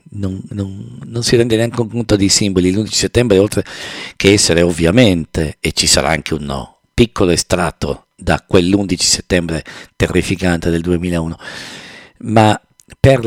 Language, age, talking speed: English, 50-69, 140 wpm